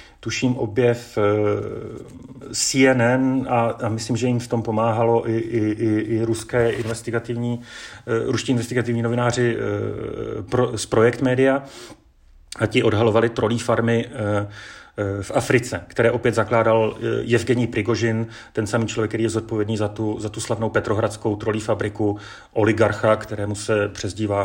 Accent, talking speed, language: native, 125 wpm, Czech